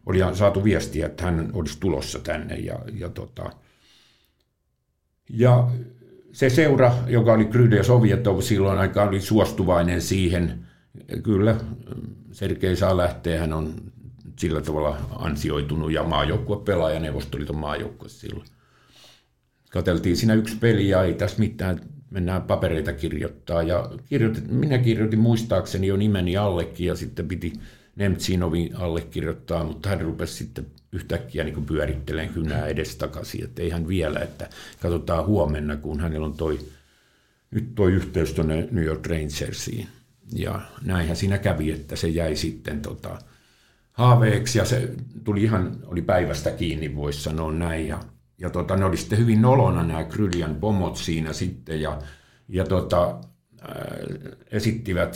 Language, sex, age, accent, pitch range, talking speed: Finnish, male, 50-69, native, 80-110 Hz, 140 wpm